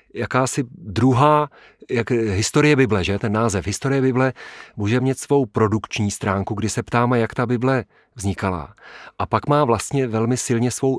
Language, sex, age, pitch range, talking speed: Czech, male, 40-59, 105-120 Hz, 160 wpm